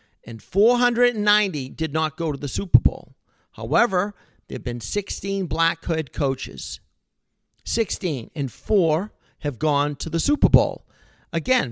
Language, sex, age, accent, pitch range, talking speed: English, male, 50-69, American, 140-185 Hz, 140 wpm